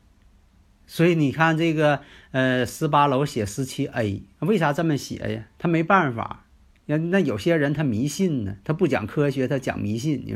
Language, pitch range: Chinese, 110-160 Hz